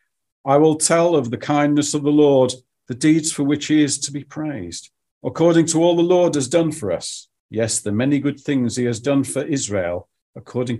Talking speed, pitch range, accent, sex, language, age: 210 wpm, 105-150 Hz, British, male, English, 50-69